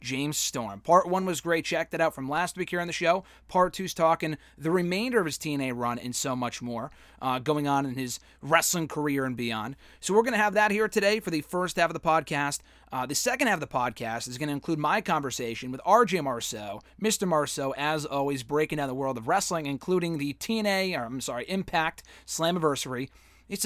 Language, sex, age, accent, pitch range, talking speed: English, male, 30-49, American, 135-180 Hz, 225 wpm